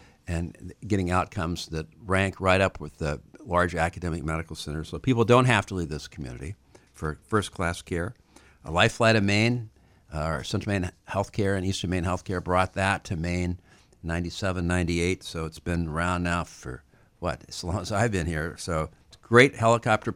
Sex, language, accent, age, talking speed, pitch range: male, English, American, 60-79, 185 wpm, 85-110 Hz